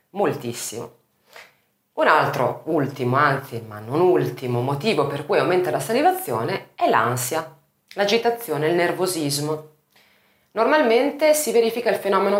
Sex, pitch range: female, 130-170 Hz